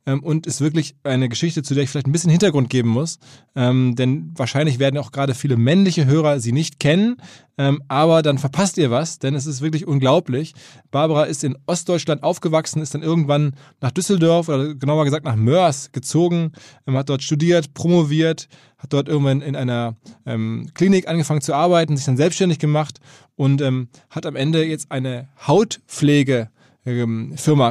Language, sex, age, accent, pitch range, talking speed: German, male, 20-39, German, 135-165 Hz, 175 wpm